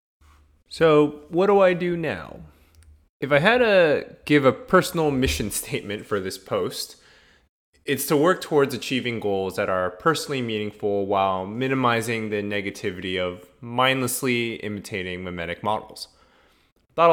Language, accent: English, American